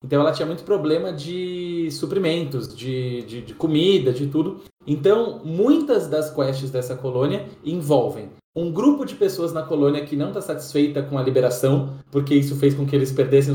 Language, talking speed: Portuguese, 175 wpm